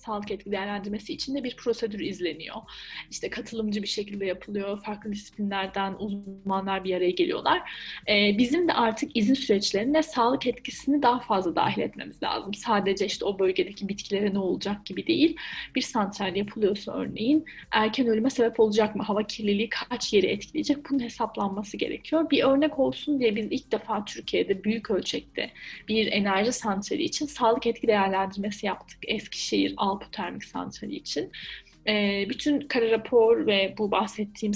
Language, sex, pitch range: Turkish, female, 200-250 Hz